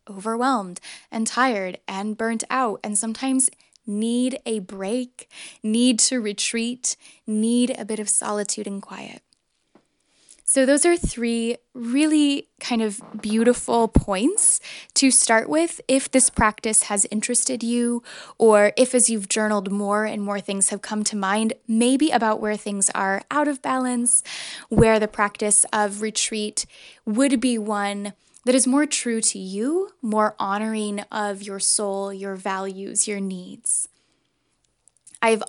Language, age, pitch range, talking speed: English, 10-29, 210-255 Hz, 140 wpm